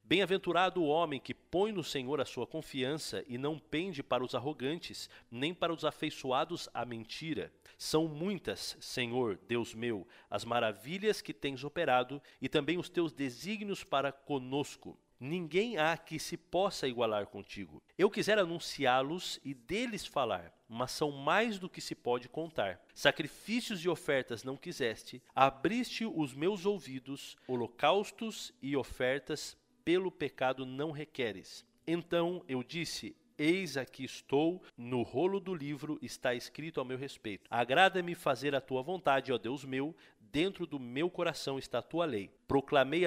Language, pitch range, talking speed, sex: Portuguese, 130-175 Hz, 150 wpm, male